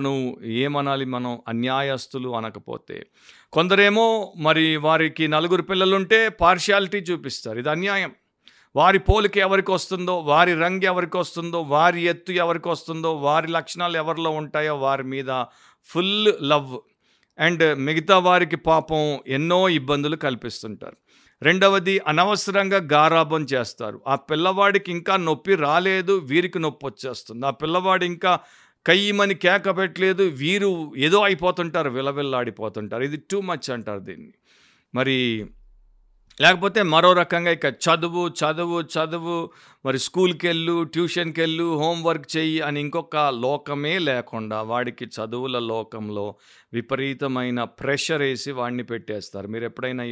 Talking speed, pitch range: 115 wpm, 130-175 Hz